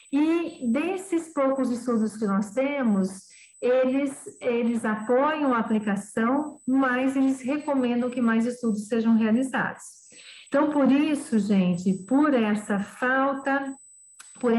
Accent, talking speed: Brazilian, 115 wpm